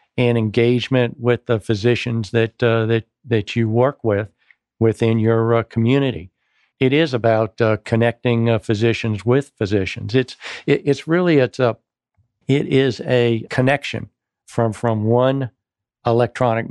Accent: American